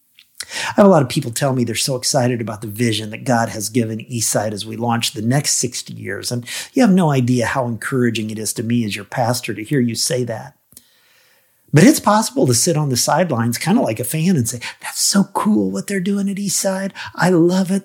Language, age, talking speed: English, 50-69, 240 wpm